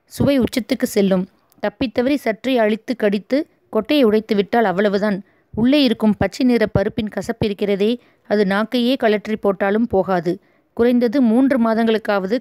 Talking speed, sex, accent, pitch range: 105 wpm, female, native, 200-235 Hz